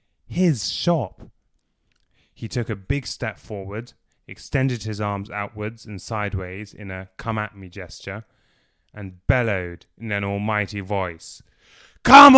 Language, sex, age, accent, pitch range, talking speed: English, male, 20-39, British, 95-115 Hz, 130 wpm